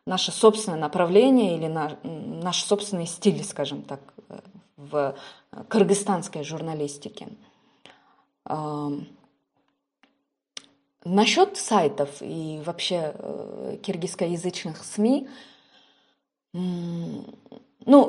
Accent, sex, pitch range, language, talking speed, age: native, female, 160-210 Hz, Russian, 70 wpm, 20-39